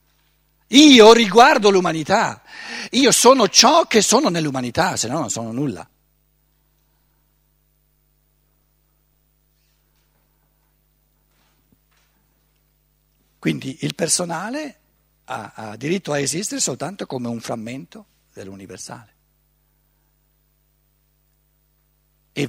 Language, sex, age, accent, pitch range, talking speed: Italian, male, 60-79, native, 150-200 Hz, 75 wpm